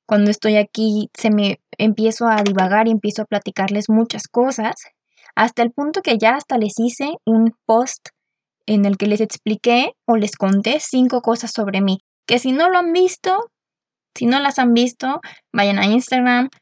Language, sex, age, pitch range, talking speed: Spanish, female, 20-39, 210-245 Hz, 180 wpm